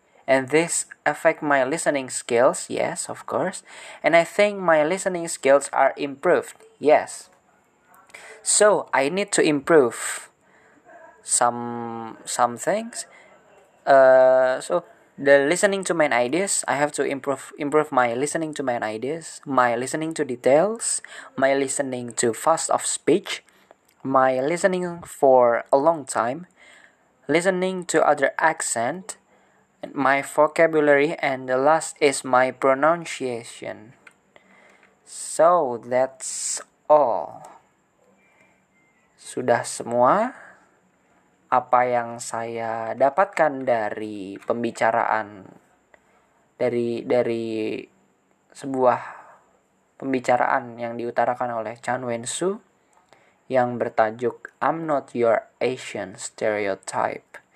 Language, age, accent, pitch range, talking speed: English, 20-39, Indonesian, 120-160 Hz, 100 wpm